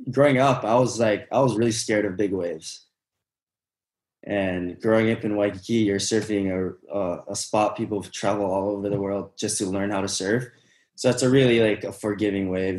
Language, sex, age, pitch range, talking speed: English, male, 20-39, 95-115 Hz, 200 wpm